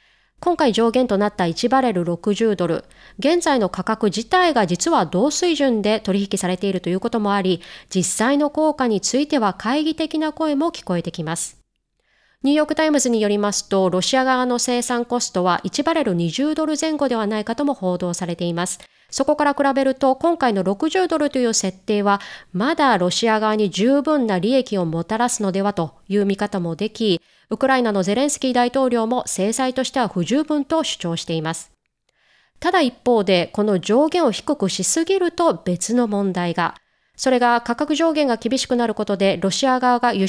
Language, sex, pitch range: Japanese, female, 190-275 Hz